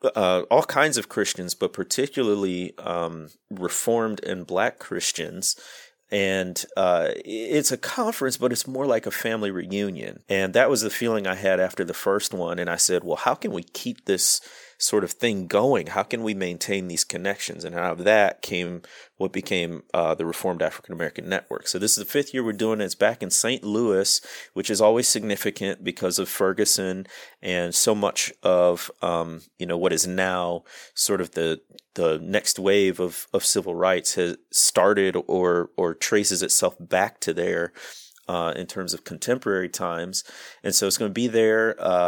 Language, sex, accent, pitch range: English, male, American, 90-110 Hz